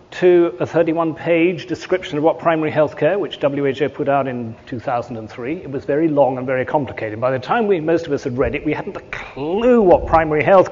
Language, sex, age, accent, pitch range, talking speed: English, male, 40-59, British, 140-180 Hz, 220 wpm